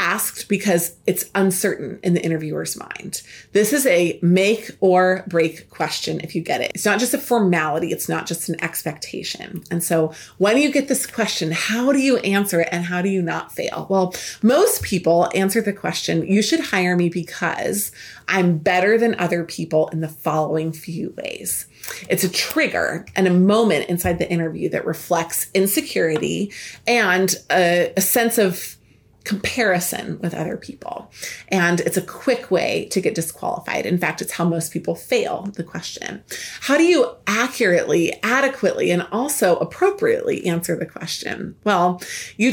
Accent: American